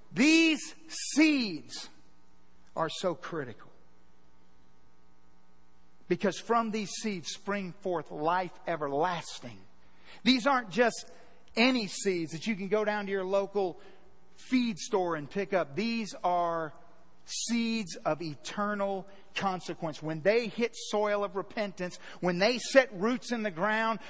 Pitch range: 195-290 Hz